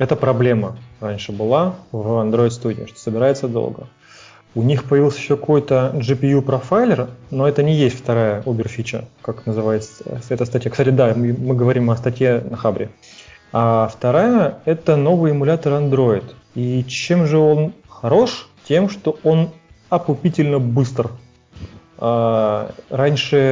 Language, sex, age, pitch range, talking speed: Russian, male, 20-39, 120-140 Hz, 135 wpm